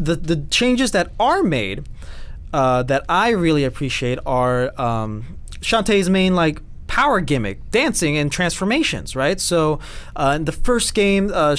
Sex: male